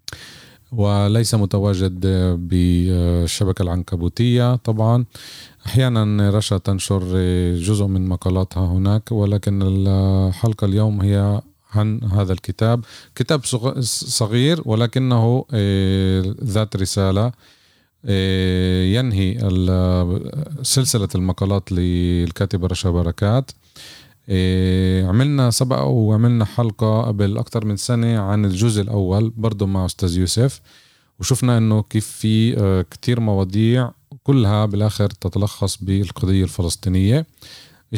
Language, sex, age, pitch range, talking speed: Arabic, male, 30-49, 95-115 Hz, 90 wpm